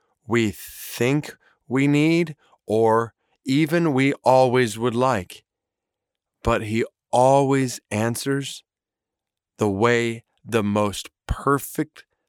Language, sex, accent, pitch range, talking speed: English, male, American, 105-135 Hz, 95 wpm